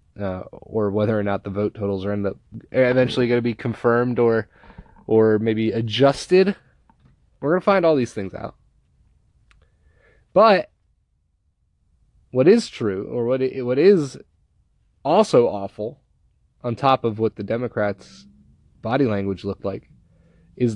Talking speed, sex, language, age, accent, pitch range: 145 wpm, male, English, 20-39, American, 100-125 Hz